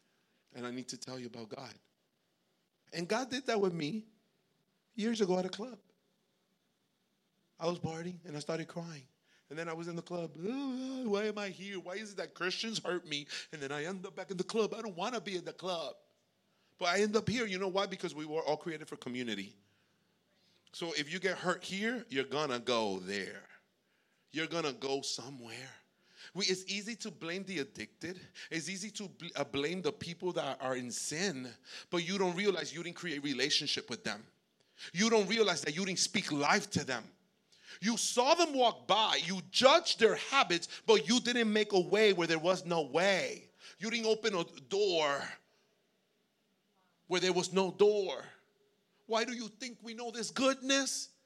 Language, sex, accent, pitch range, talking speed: English, male, American, 165-215 Hz, 195 wpm